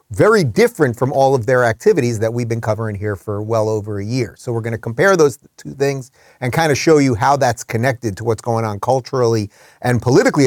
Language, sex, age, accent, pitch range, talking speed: English, male, 30-49, American, 110-145 Hz, 230 wpm